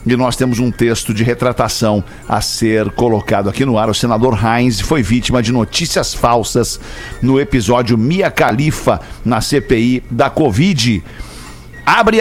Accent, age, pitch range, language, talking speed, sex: Brazilian, 60-79, 125-180 Hz, Portuguese, 145 wpm, male